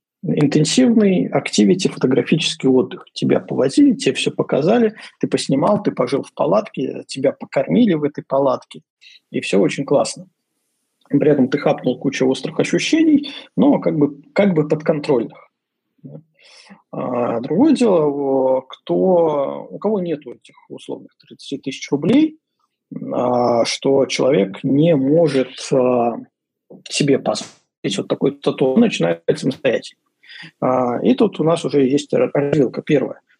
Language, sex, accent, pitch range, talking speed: Russian, male, native, 130-170 Hz, 115 wpm